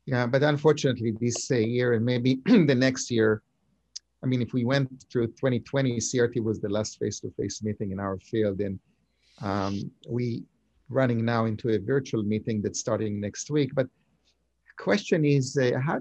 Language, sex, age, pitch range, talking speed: English, male, 50-69, 110-145 Hz, 170 wpm